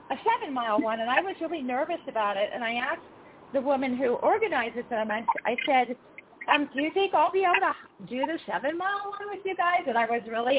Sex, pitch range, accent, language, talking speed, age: female, 240-350 Hz, American, English, 230 wpm, 40-59